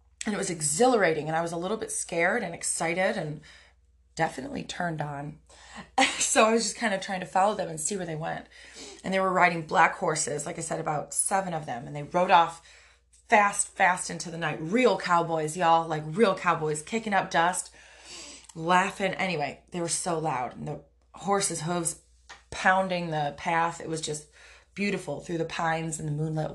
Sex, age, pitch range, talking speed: female, 20-39, 155-190 Hz, 195 wpm